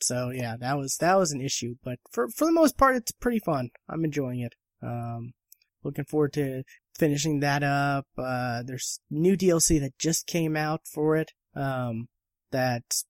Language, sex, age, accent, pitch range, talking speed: English, male, 20-39, American, 130-160 Hz, 180 wpm